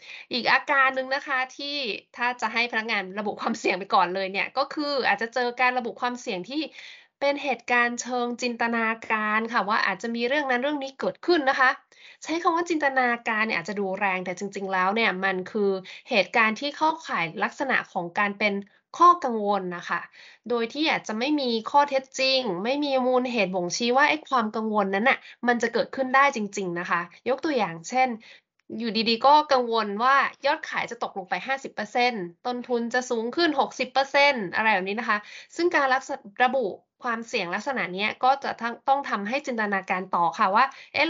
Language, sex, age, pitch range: Thai, female, 20-39, 205-270 Hz